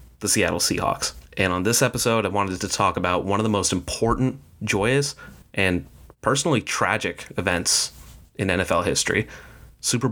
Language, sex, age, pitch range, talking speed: English, male, 30-49, 95-130 Hz, 155 wpm